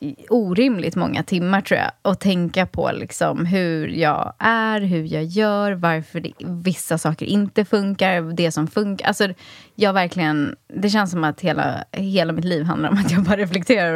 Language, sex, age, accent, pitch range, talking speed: Swedish, female, 20-39, native, 165-210 Hz, 175 wpm